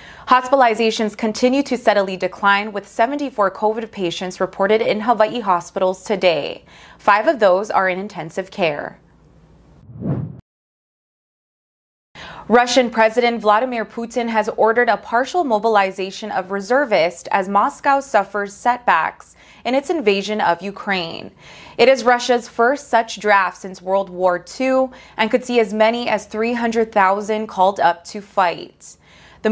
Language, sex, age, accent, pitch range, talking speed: English, female, 20-39, American, 190-230 Hz, 130 wpm